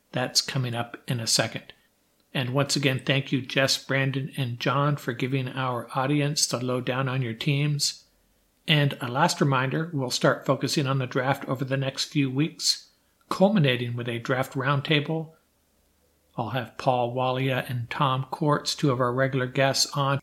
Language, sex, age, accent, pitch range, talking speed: English, male, 60-79, American, 125-150 Hz, 170 wpm